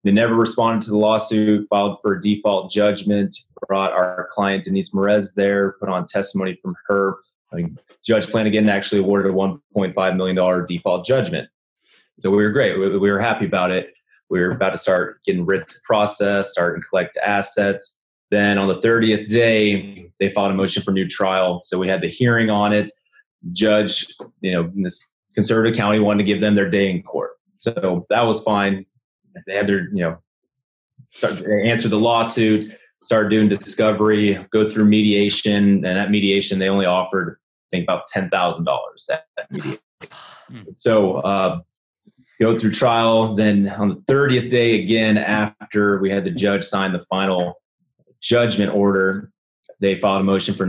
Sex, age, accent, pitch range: male, 20-39, American, 95-110 Hz